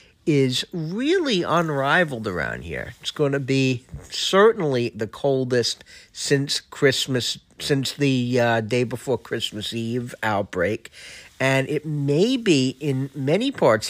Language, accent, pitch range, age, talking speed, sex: English, American, 125-175 Hz, 50-69, 125 wpm, male